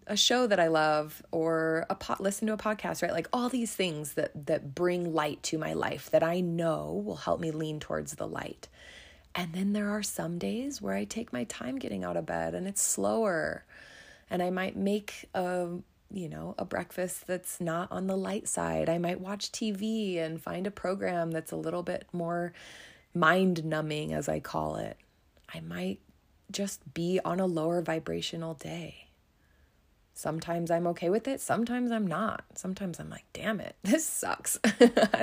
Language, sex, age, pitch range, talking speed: English, female, 20-39, 150-195 Hz, 185 wpm